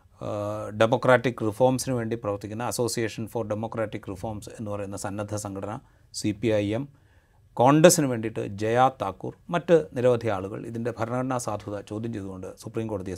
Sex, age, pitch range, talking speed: male, 30-49, 105-135 Hz, 130 wpm